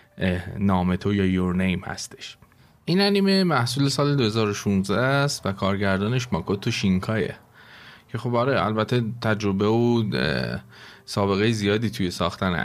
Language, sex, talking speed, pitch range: Persian, male, 125 wpm, 105-130 Hz